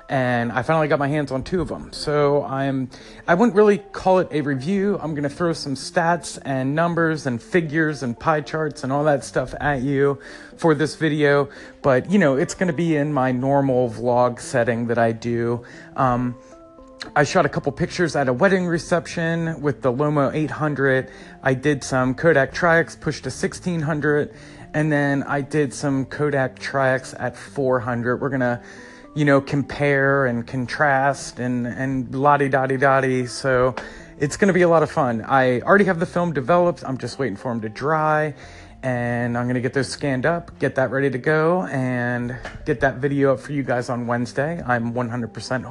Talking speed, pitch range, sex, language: 190 wpm, 125-155 Hz, male, English